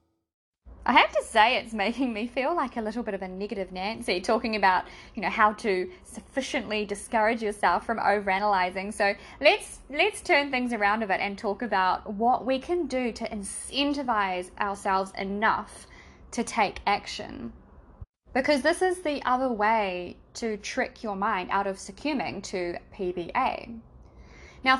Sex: female